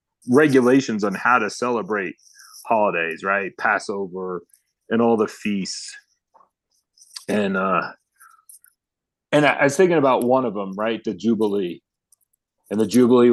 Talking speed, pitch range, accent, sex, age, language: 130 wpm, 105-130 Hz, American, male, 30-49, English